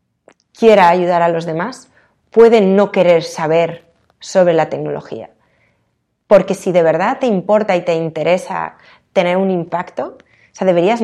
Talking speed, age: 145 wpm, 30-49